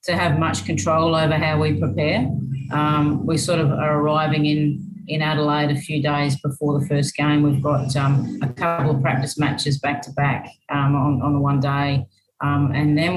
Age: 30-49